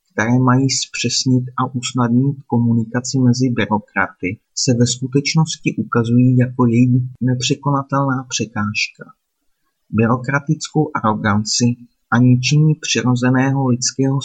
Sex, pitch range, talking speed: male, 115-135 Hz, 95 wpm